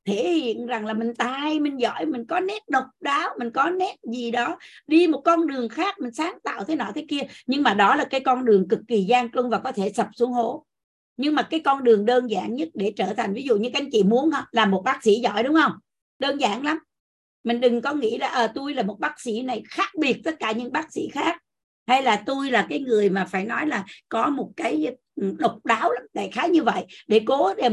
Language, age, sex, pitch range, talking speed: Vietnamese, 60-79, female, 225-305 Hz, 255 wpm